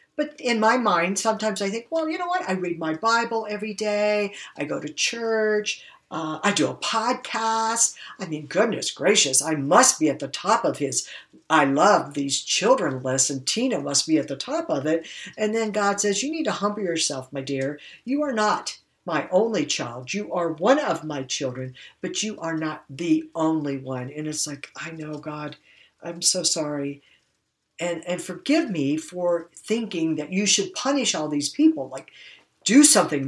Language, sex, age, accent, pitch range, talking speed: English, female, 60-79, American, 150-225 Hz, 195 wpm